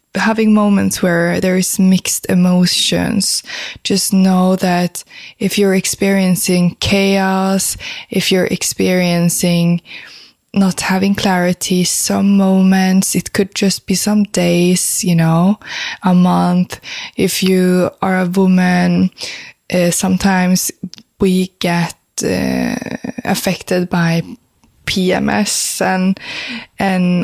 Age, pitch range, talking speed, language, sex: 20-39, 175-195 Hz, 105 wpm, English, female